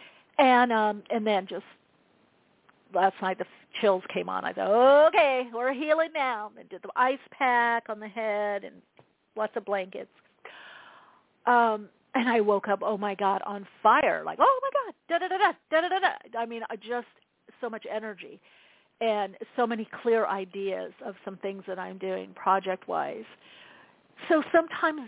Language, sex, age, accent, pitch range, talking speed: English, female, 50-69, American, 195-245 Hz, 160 wpm